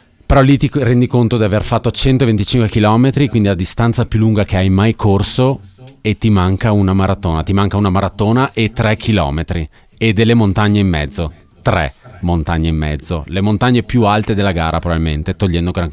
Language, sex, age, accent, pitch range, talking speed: Italian, male, 30-49, native, 90-110 Hz, 185 wpm